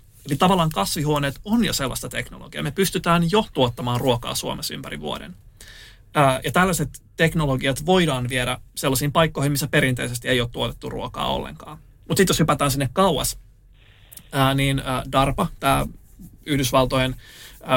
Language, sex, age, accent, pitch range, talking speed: Finnish, male, 30-49, native, 120-150 Hz, 130 wpm